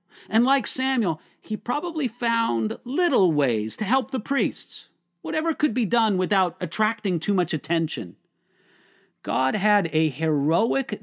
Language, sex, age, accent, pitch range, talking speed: English, male, 40-59, American, 165-220 Hz, 135 wpm